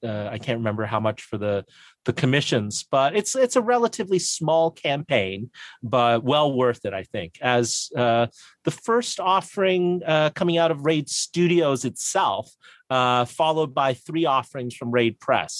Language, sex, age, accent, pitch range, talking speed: English, male, 30-49, American, 120-160 Hz, 165 wpm